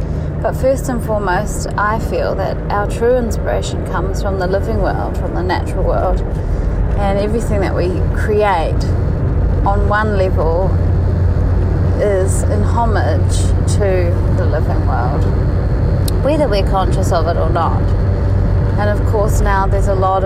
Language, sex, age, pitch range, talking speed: English, female, 30-49, 90-100 Hz, 140 wpm